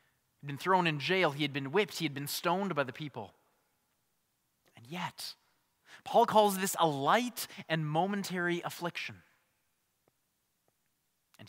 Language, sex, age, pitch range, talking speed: English, male, 20-39, 130-175 Hz, 135 wpm